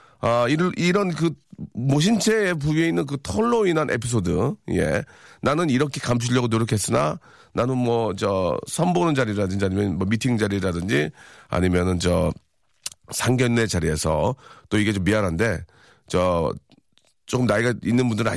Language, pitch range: Korean, 95-140 Hz